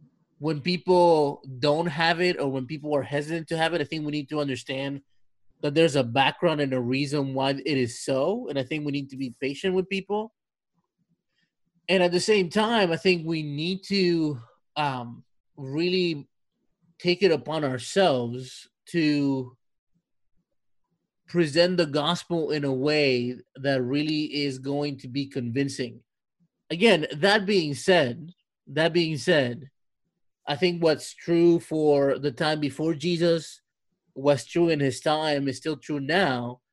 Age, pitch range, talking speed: 30-49, 140-175 Hz, 155 wpm